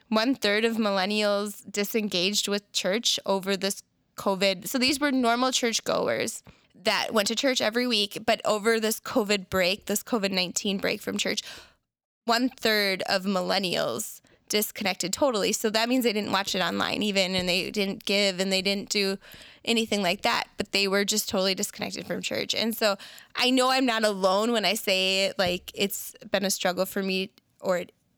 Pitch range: 195-235 Hz